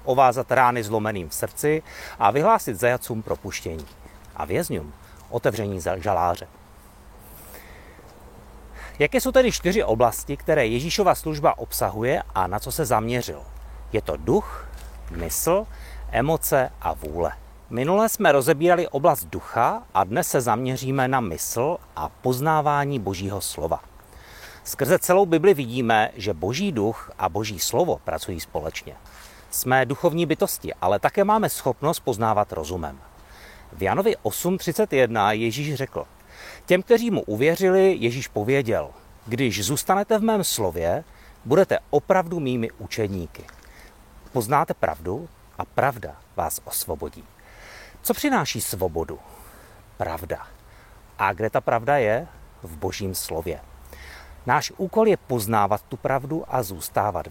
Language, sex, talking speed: Czech, male, 120 wpm